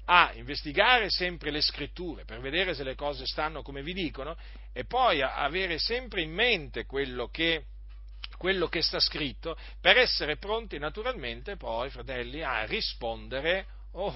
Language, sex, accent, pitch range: Italian, male, native, 110-155 Hz